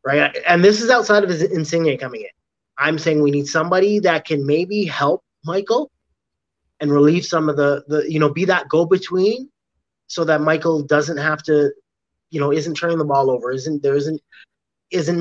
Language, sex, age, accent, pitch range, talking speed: English, male, 30-49, American, 145-175 Hz, 190 wpm